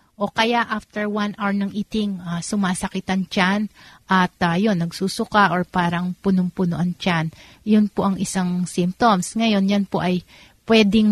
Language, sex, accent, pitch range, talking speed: Filipino, female, native, 180-210 Hz, 155 wpm